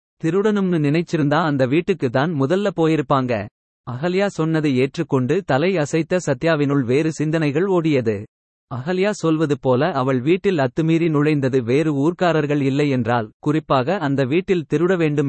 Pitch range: 135-170 Hz